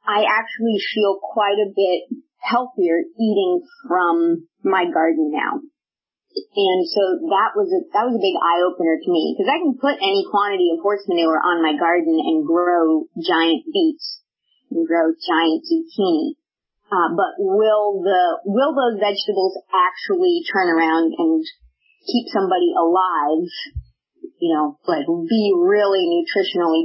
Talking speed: 145 wpm